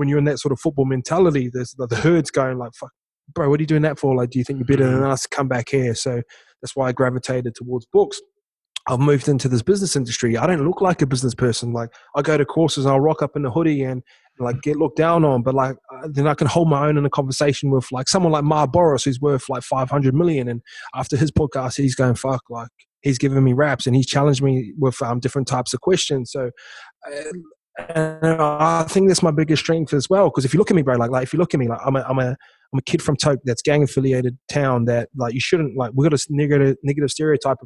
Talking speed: 270 wpm